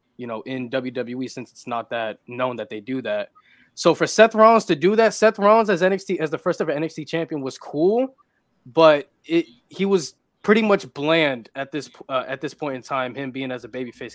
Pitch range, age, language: 130-155 Hz, 20-39, English